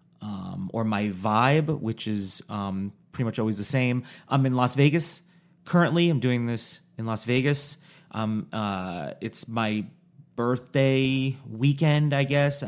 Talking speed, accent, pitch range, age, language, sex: 145 wpm, American, 115-150 Hz, 30-49, English, male